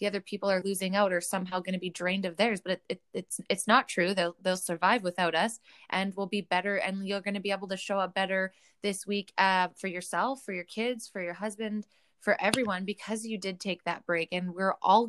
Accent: American